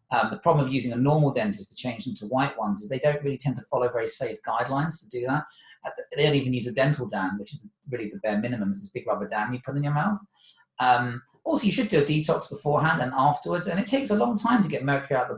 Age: 30-49